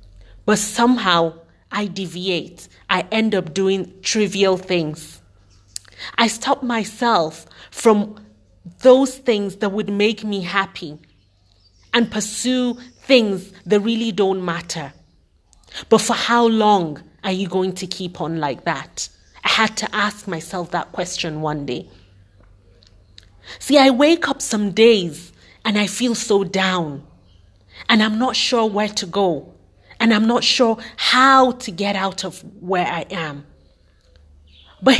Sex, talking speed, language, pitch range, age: female, 135 wpm, English, 150-215 Hz, 30-49